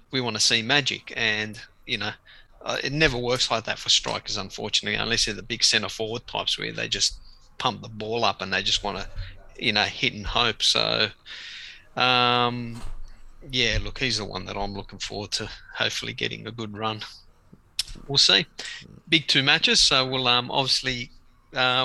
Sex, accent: male, Australian